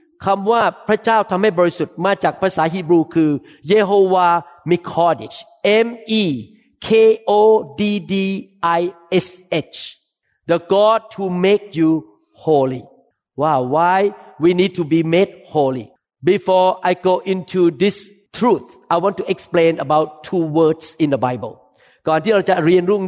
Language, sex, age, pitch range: Thai, male, 50-69, 170-225 Hz